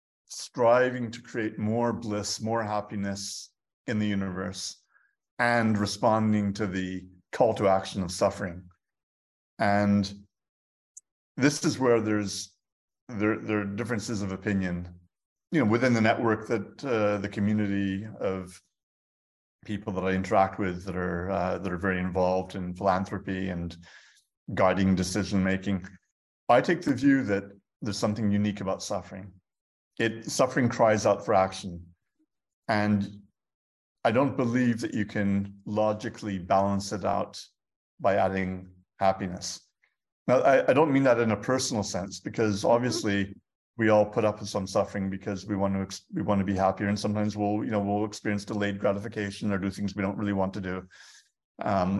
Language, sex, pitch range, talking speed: English, male, 95-105 Hz, 155 wpm